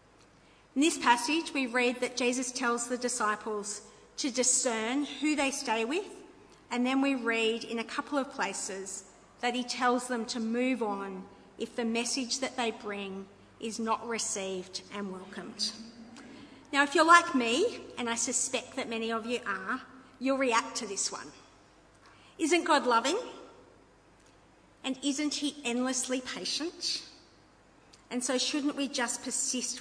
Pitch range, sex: 225-270 Hz, female